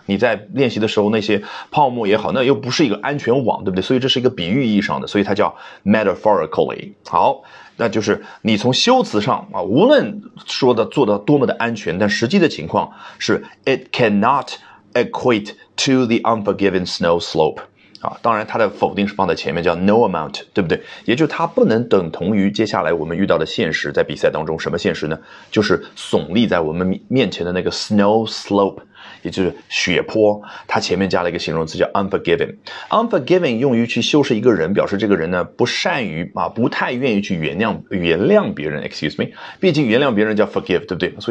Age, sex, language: 30-49, male, Chinese